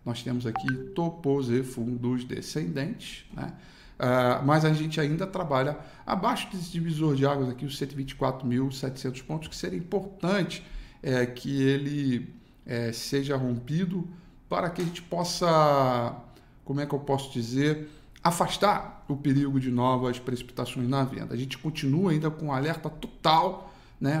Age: 40-59